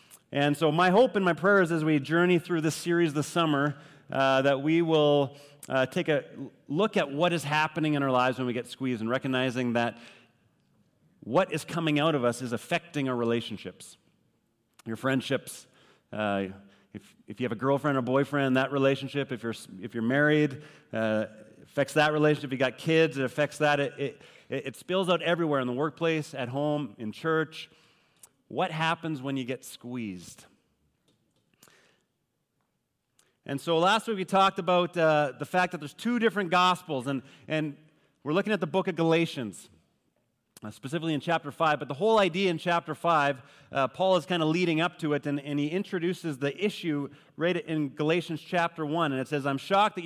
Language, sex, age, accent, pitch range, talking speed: English, male, 30-49, American, 135-170 Hz, 190 wpm